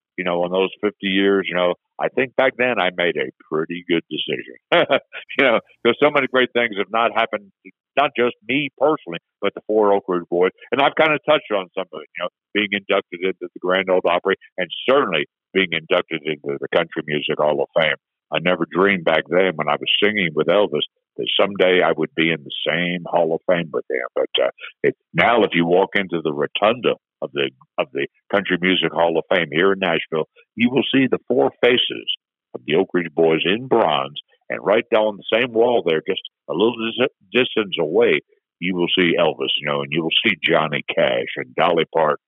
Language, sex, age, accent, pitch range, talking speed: English, male, 60-79, American, 85-130 Hz, 220 wpm